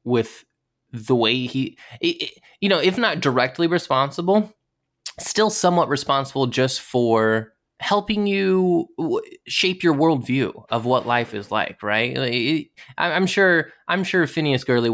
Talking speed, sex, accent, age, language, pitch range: 145 wpm, male, American, 20-39, English, 105-140 Hz